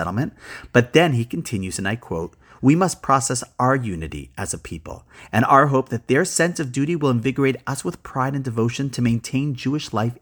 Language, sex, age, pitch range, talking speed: English, male, 40-59, 105-150 Hz, 205 wpm